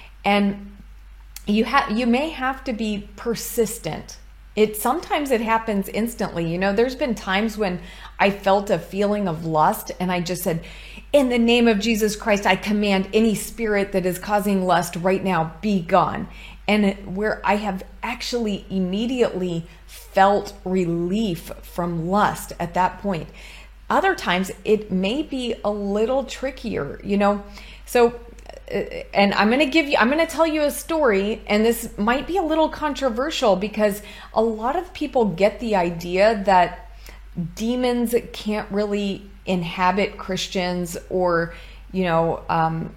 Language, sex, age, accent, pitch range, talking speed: English, female, 30-49, American, 185-230 Hz, 155 wpm